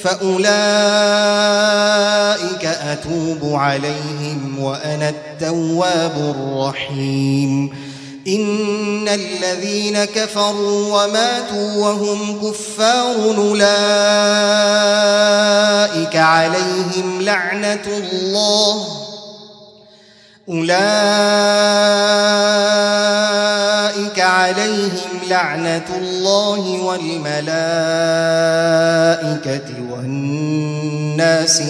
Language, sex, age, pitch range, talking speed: Arabic, male, 30-49, 150-205 Hz, 40 wpm